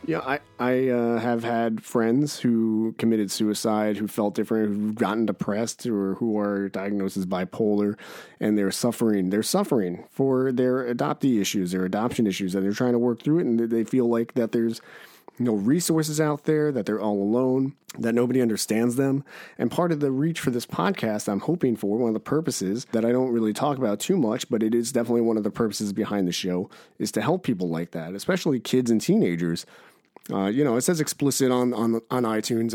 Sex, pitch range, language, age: male, 100-125 Hz, English, 30-49